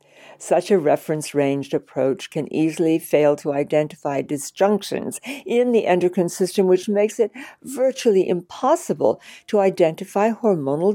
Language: English